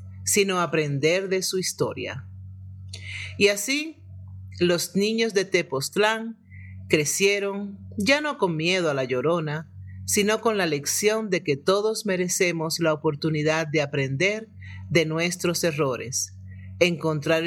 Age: 50-69